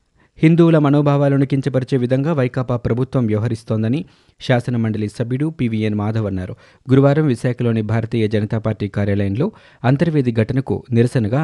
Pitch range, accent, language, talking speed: 110-135 Hz, native, Telugu, 110 wpm